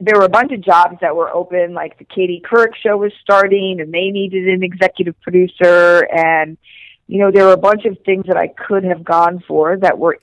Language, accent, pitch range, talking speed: English, American, 165-190 Hz, 230 wpm